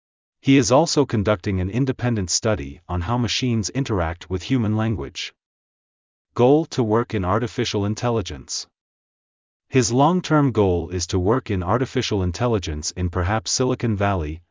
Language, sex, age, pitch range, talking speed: English, male, 40-59, 90-120 Hz, 135 wpm